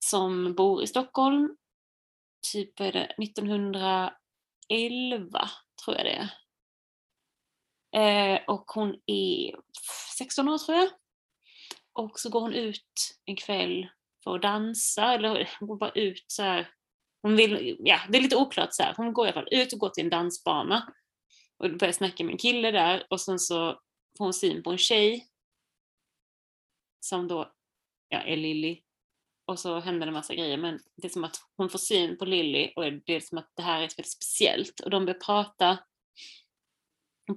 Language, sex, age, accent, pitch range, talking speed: Swedish, female, 30-49, native, 180-220 Hz, 170 wpm